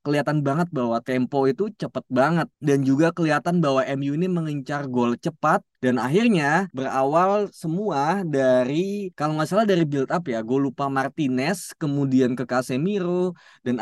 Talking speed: 150 wpm